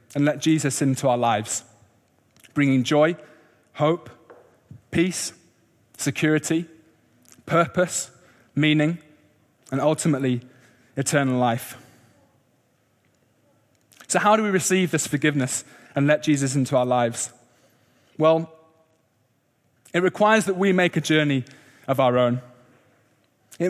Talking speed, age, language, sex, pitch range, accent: 105 wpm, 20-39, English, male, 125-170 Hz, British